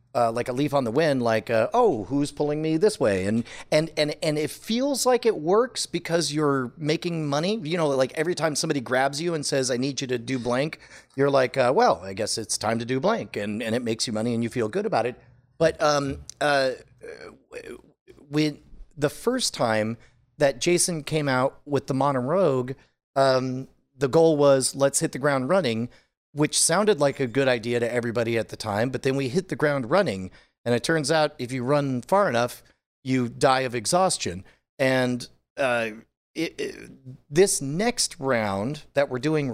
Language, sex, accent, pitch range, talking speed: English, male, American, 120-155 Hz, 195 wpm